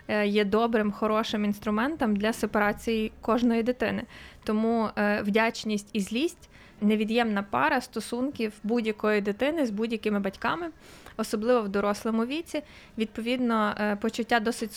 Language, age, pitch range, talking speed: Ukrainian, 20-39, 215-245 Hz, 115 wpm